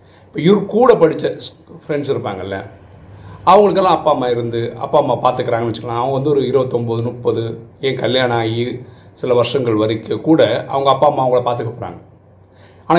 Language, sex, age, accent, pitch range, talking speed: Tamil, male, 40-59, native, 105-160 Hz, 150 wpm